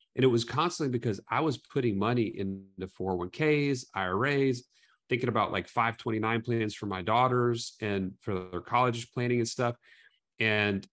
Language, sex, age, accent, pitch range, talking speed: English, male, 30-49, American, 105-135 Hz, 160 wpm